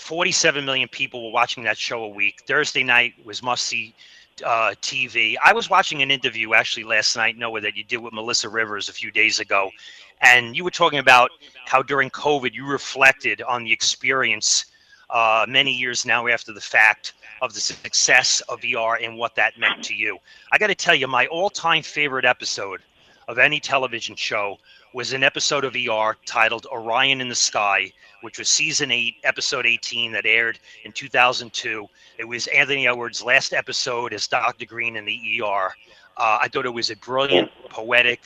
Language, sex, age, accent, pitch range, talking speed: English, male, 30-49, American, 115-140 Hz, 185 wpm